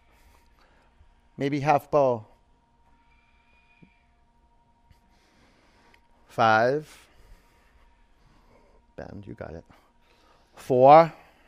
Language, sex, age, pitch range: English, male, 40-59, 115-165 Hz